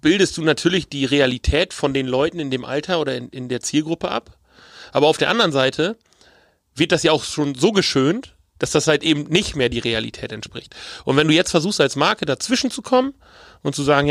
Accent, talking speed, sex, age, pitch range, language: German, 215 wpm, male, 30-49, 135-170 Hz, German